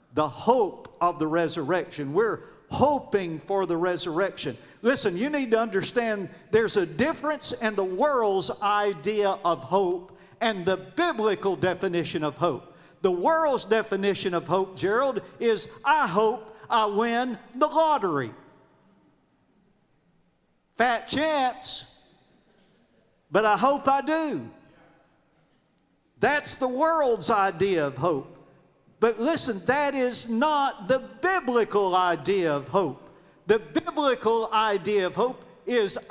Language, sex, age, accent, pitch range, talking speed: English, male, 50-69, American, 185-260 Hz, 120 wpm